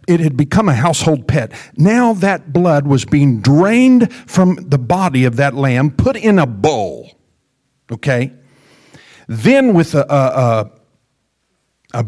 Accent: American